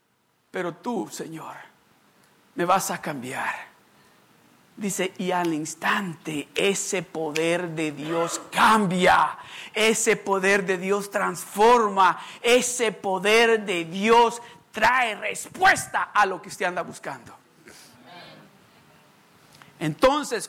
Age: 50-69